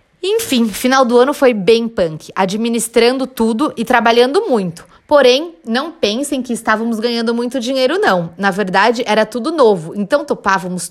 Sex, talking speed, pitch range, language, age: female, 155 wpm, 195-260 Hz, Portuguese, 20-39